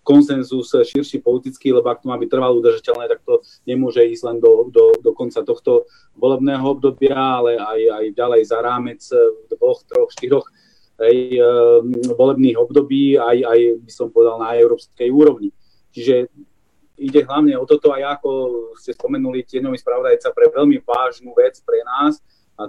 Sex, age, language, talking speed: male, 30-49, Slovak, 160 wpm